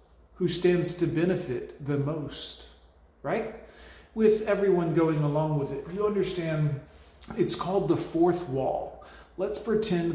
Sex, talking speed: male, 130 wpm